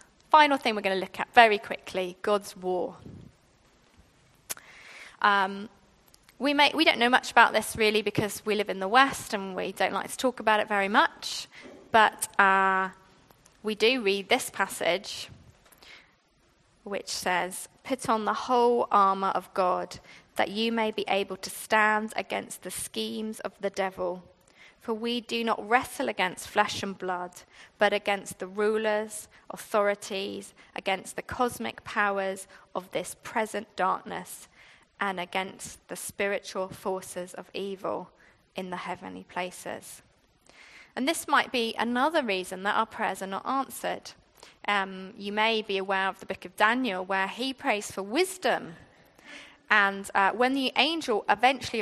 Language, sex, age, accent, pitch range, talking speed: English, female, 20-39, British, 195-240 Hz, 150 wpm